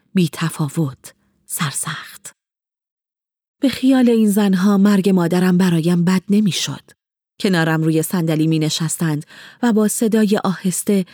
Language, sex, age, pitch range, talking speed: Persian, female, 30-49, 170-205 Hz, 110 wpm